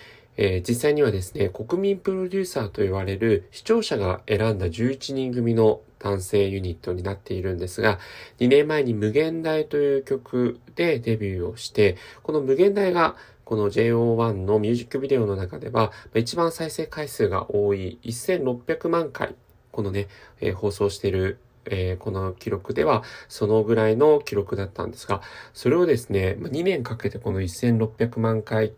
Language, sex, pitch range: Japanese, male, 100-150 Hz